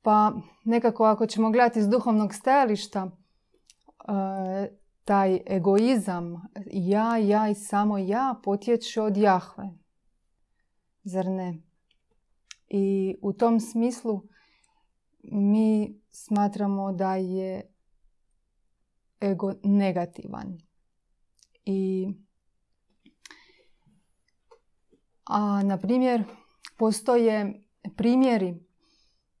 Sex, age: female, 30-49